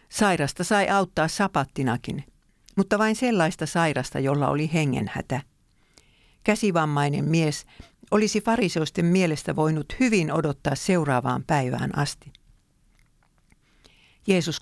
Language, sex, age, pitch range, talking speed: English, female, 50-69, 145-185 Hz, 95 wpm